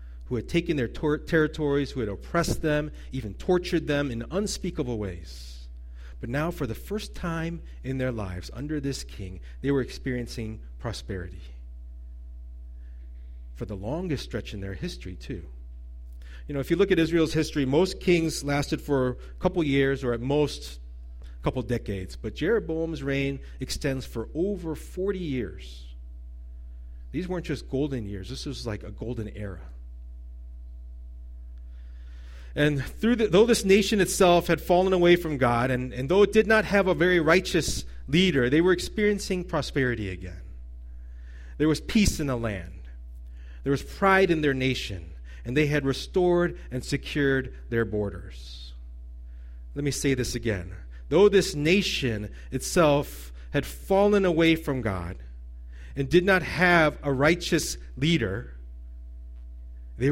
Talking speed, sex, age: 150 wpm, male, 40-59